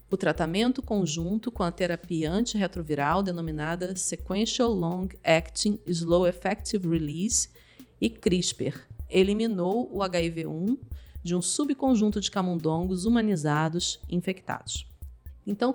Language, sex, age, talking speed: Portuguese, female, 40-59, 105 wpm